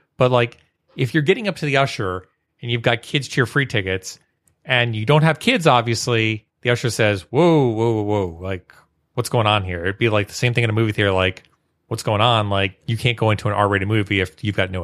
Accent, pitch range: American, 105-135 Hz